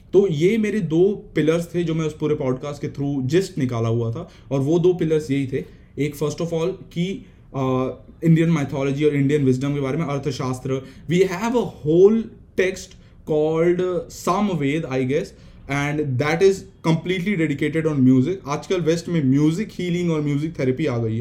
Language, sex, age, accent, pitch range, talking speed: Hindi, male, 20-39, native, 130-170 Hz, 180 wpm